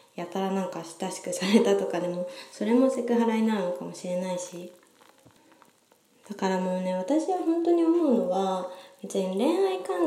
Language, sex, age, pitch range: Japanese, female, 20-39, 190-250 Hz